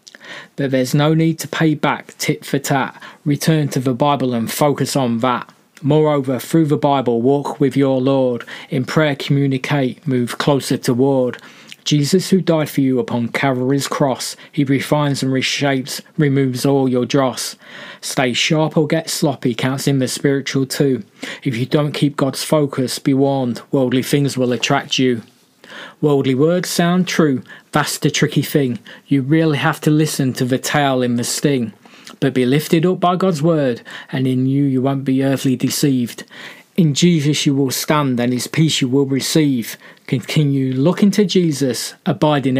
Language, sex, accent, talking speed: English, male, British, 170 wpm